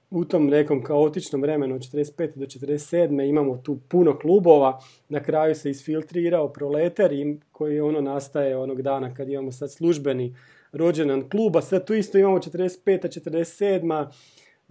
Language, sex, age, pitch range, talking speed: Croatian, male, 30-49, 135-170 Hz, 135 wpm